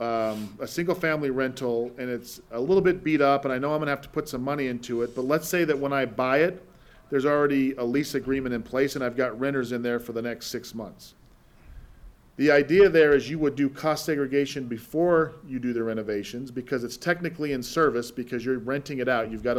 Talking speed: 235 wpm